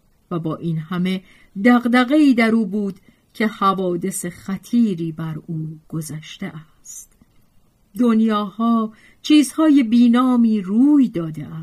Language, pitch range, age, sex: Persian, 160-210 Hz, 40-59, female